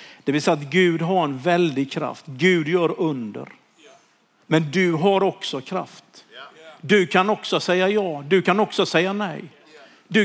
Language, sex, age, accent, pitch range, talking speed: Swedish, male, 50-69, native, 180-220 Hz, 165 wpm